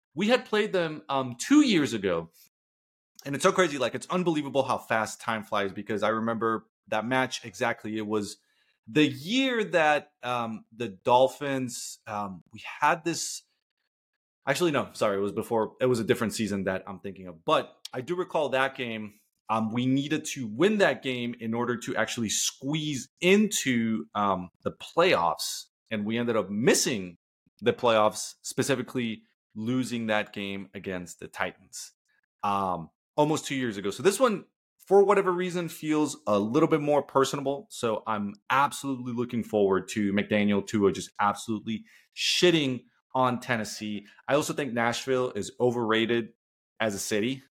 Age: 30-49